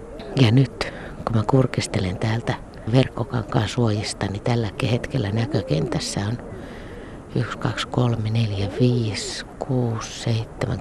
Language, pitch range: Finnish, 110-130 Hz